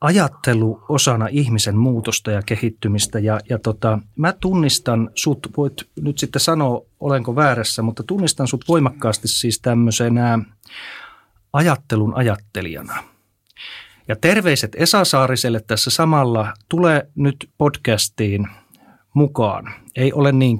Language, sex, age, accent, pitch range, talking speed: Finnish, male, 30-49, native, 110-145 Hz, 115 wpm